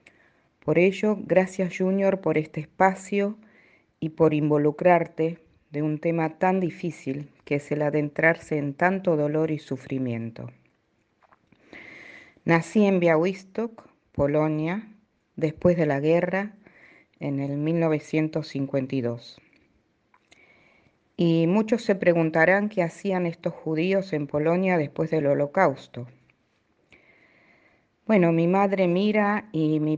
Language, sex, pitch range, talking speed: Spanish, female, 145-180 Hz, 110 wpm